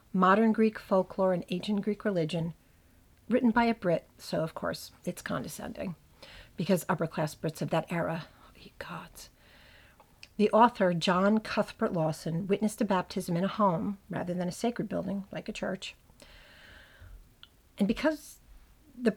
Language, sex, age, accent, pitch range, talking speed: English, female, 50-69, American, 180-220 Hz, 140 wpm